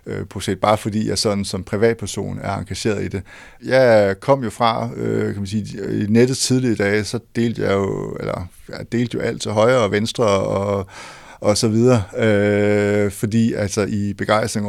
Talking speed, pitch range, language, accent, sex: 190 wpm, 100-115 Hz, Danish, native, male